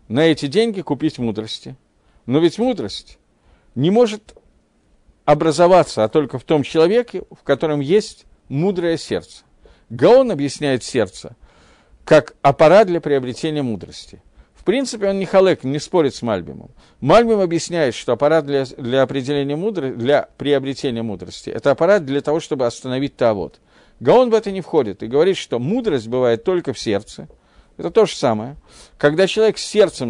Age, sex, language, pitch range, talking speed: 50-69, male, Russian, 130-190 Hz, 150 wpm